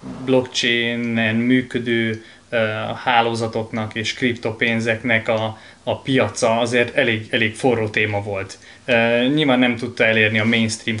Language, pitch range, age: Hungarian, 110-130 Hz, 20-39